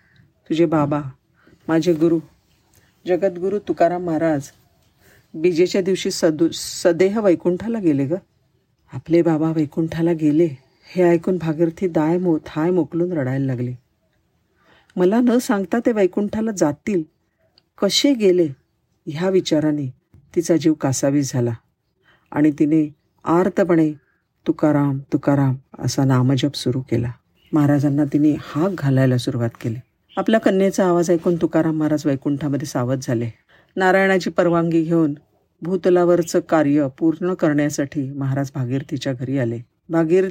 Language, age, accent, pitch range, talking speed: Marathi, 50-69, native, 140-175 Hz, 115 wpm